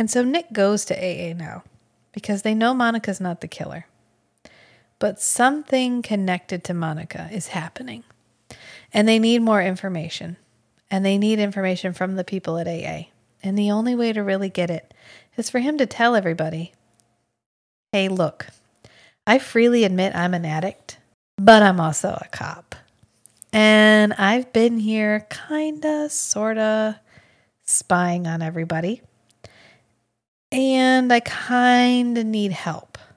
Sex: female